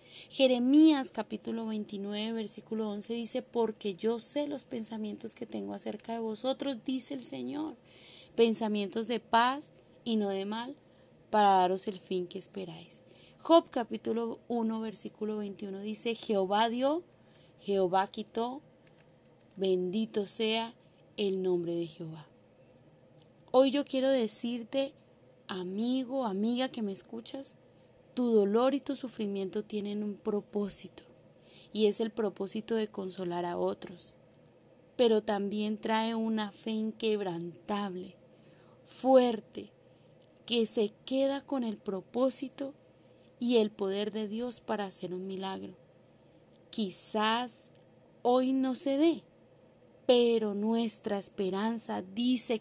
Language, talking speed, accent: Spanish, 120 wpm, Colombian